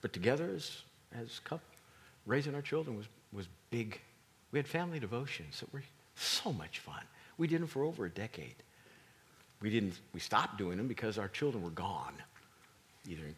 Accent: American